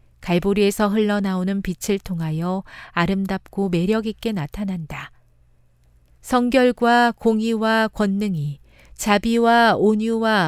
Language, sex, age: Korean, female, 40-59